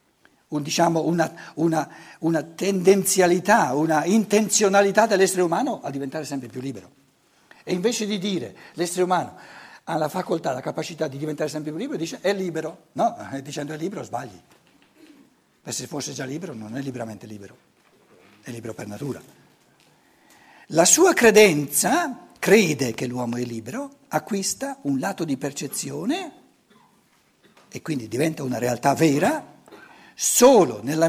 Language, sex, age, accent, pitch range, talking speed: Italian, male, 60-79, native, 140-205 Hz, 140 wpm